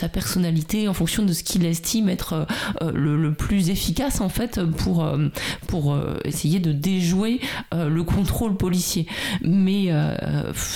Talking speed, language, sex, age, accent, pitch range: 155 wpm, French, female, 30-49, French, 170-205 Hz